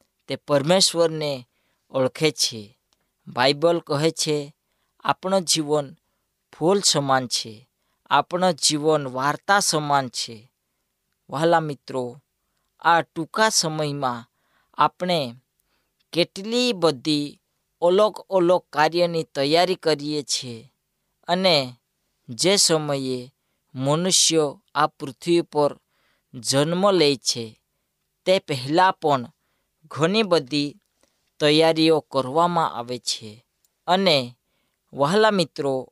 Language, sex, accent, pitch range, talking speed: Gujarati, female, native, 135-175 Hz, 75 wpm